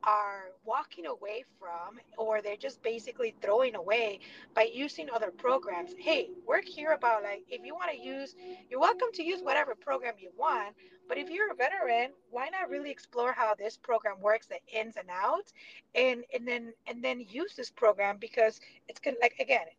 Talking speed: 190 wpm